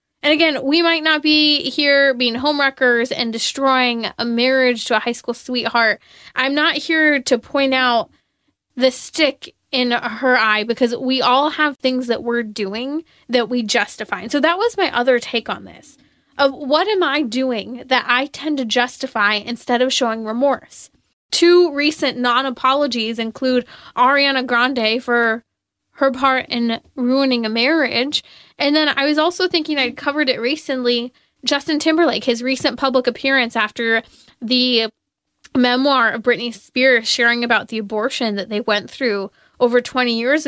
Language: English